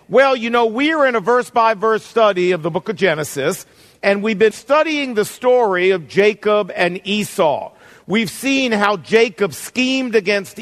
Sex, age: male, 50-69